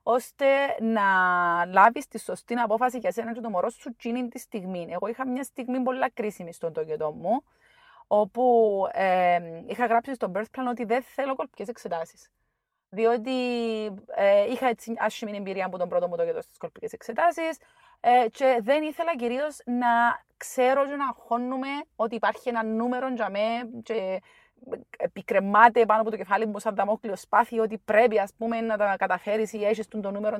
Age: 30-49